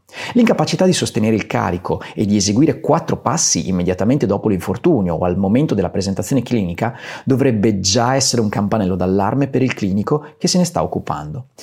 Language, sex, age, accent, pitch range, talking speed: Italian, male, 30-49, native, 100-140 Hz, 170 wpm